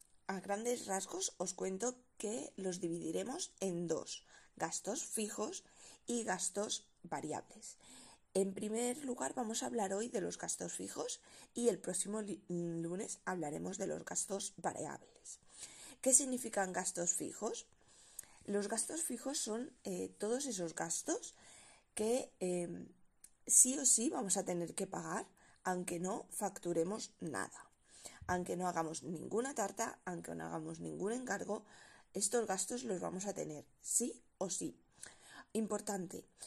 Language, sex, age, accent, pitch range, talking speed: Spanish, female, 20-39, Spanish, 175-230 Hz, 135 wpm